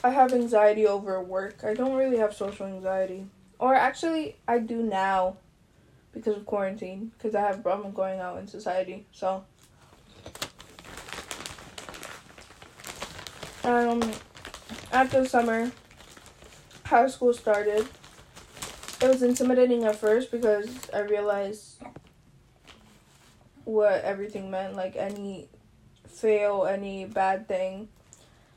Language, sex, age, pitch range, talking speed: English, female, 10-29, 200-235 Hz, 110 wpm